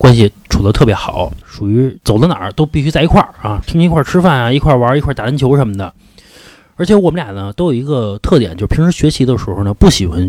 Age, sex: 30-49, male